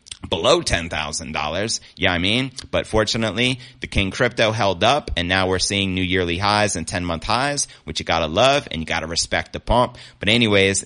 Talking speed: 205 wpm